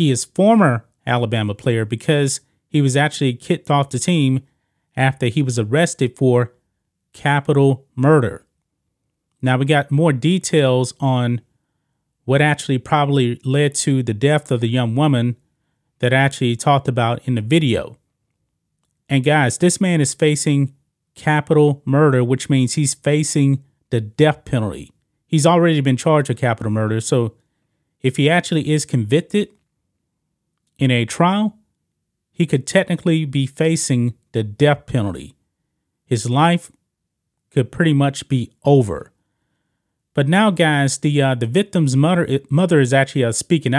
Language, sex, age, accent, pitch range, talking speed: English, male, 30-49, American, 125-150 Hz, 145 wpm